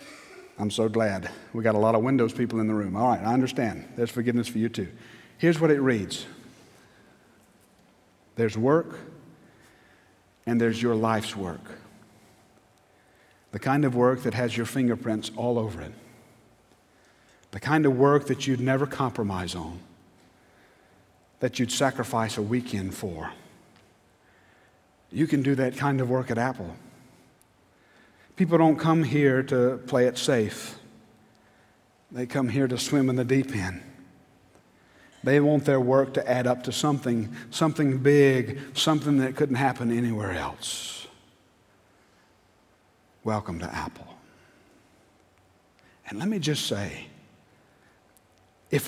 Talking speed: 135 wpm